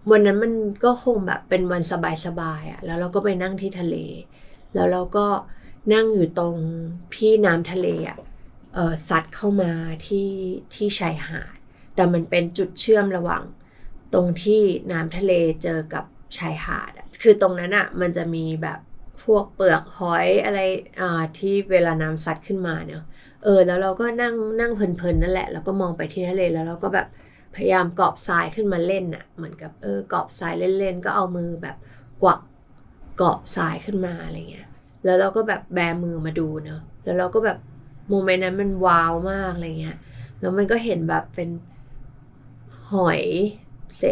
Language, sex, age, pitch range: Thai, female, 20-39, 160-200 Hz